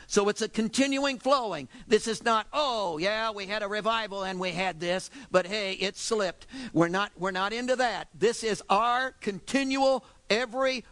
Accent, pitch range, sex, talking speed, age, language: American, 190-240 Hz, male, 180 wpm, 50-69, English